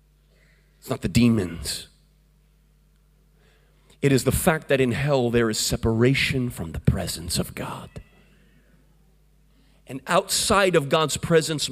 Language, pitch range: English, 140-195 Hz